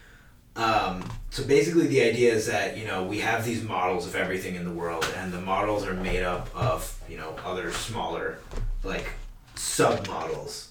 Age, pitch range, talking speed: 30-49, 95-120 Hz, 175 wpm